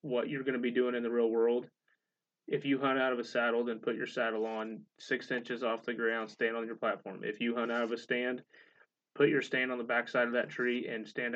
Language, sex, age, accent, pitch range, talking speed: English, male, 30-49, American, 110-125 Hz, 265 wpm